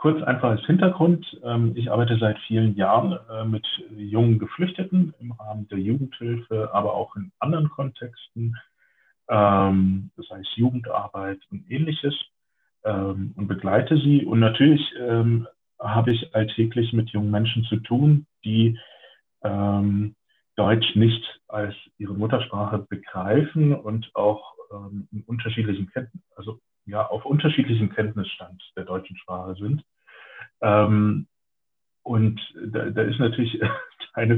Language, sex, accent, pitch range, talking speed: German, male, German, 105-125 Hz, 105 wpm